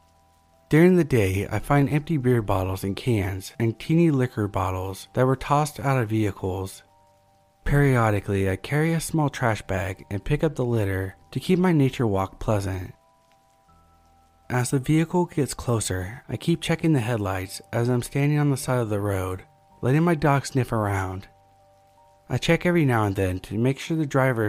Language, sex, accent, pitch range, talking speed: English, male, American, 95-140 Hz, 180 wpm